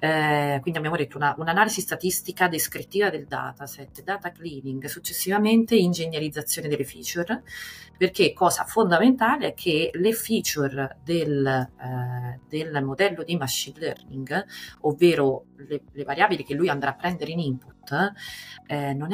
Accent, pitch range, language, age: native, 135-175 Hz, Italian, 30-49